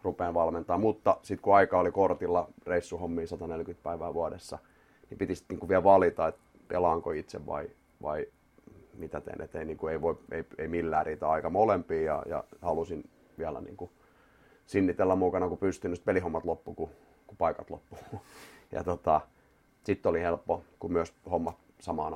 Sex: male